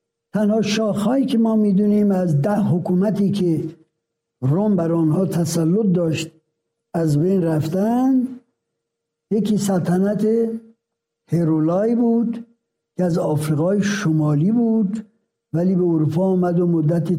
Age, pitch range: 60-79, 155-220 Hz